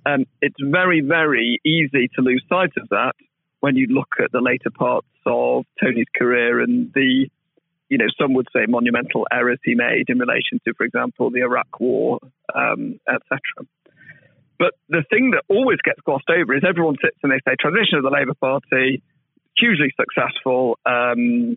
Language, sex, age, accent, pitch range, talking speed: English, male, 40-59, British, 130-175 Hz, 175 wpm